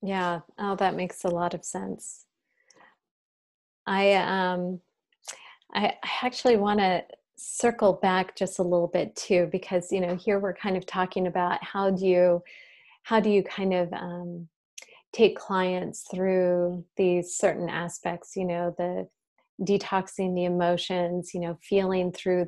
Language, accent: English, American